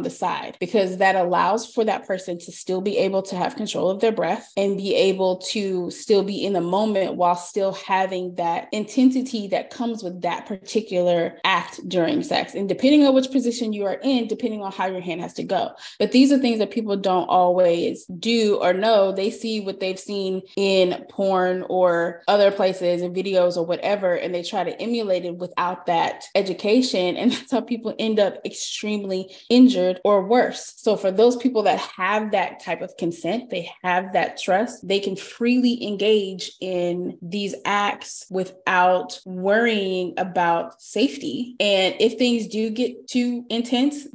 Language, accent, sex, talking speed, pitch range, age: English, American, female, 180 wpm, 185-225 Hz, 20-39